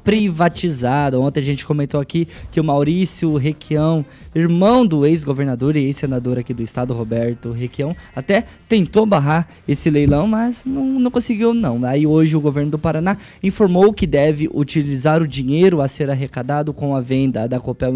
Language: Portuguese